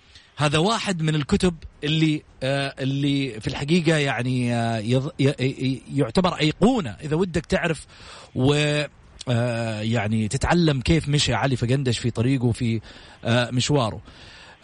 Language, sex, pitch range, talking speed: Arabic, male, 135-185 Hz, 105 wpm